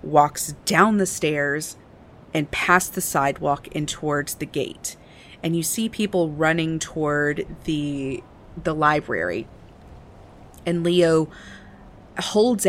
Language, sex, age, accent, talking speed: English, female, 40-59, American, 115 wpm